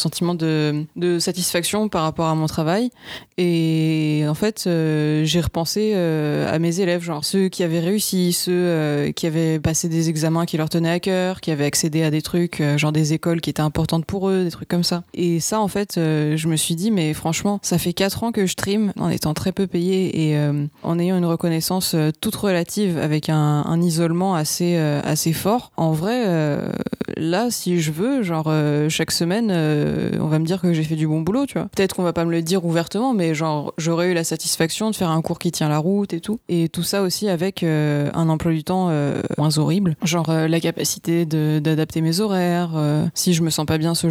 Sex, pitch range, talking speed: female, 160-185 Hz, 235 wpm